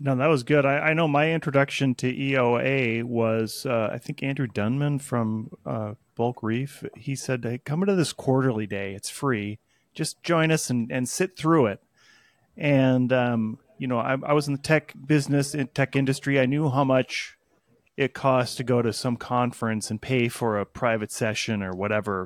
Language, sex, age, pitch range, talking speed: English, male, 30-49, 115-145 Hz, 195 wpm